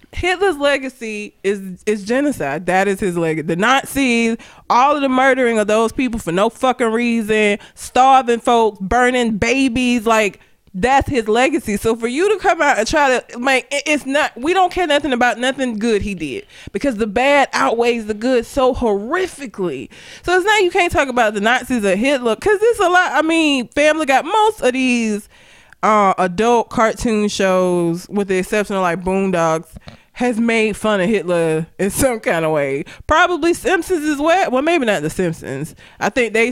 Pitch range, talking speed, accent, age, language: 195-280 Hz, 185 wpm, American, 20-39, English